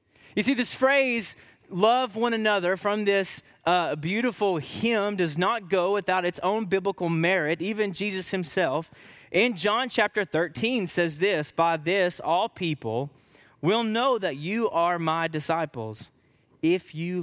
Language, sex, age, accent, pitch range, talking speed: English, male, 20-39, American, 115-175 Hz, 145 wpm